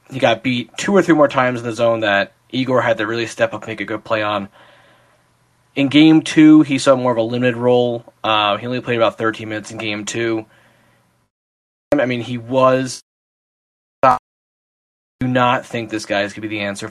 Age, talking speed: 20-39, 215 wpm